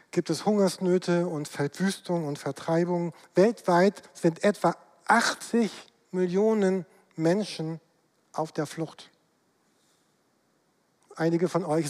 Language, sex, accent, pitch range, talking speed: German, male, German, 165-195 Hz, 95 wpm